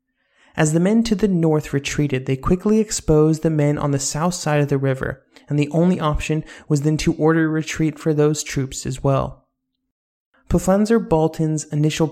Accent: American